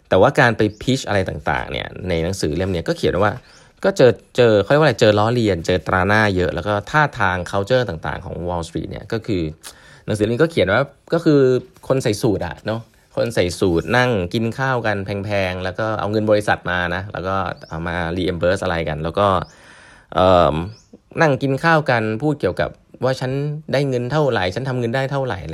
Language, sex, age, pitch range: Thai, male, 20-39, 90-125 Hz